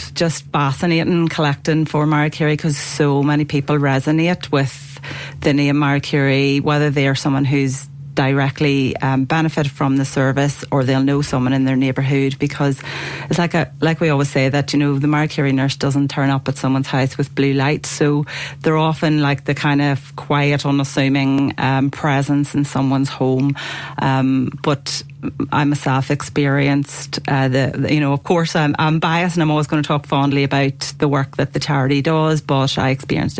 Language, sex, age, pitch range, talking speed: English, female, 40-59, 135-150 Hz, 185 wpm